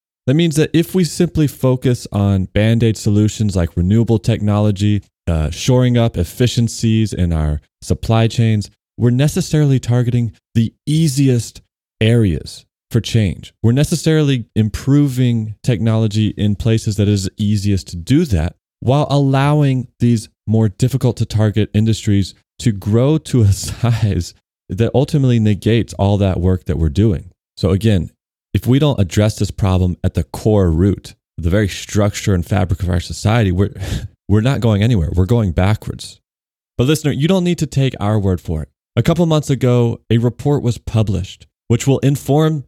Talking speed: 160 wpm